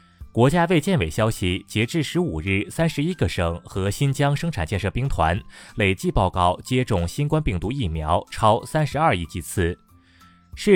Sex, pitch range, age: male, 90-140 Hz, 20-39